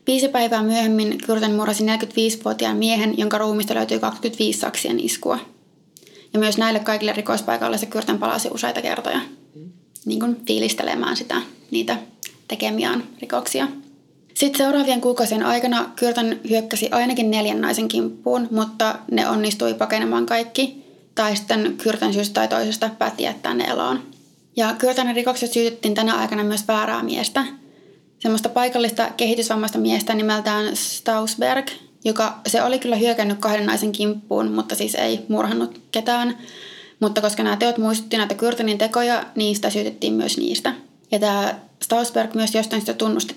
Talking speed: 140 wpm